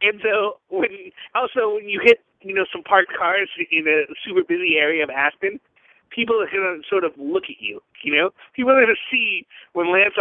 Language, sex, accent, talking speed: English, male, American, 215 wpm